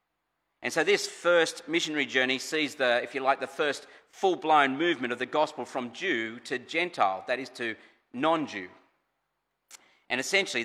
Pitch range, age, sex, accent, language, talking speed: 120-155 Hz, 40-59, male, Australian, English, 160 wpm